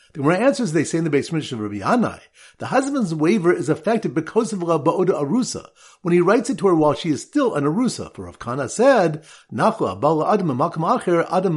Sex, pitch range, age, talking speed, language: male, 145-210 Hz, 50-69, 195 wpm, English